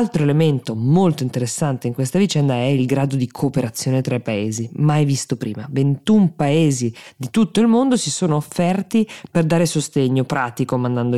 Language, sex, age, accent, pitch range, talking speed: Italian, female, 20-39, native, 130-170 Hz, 170 wpm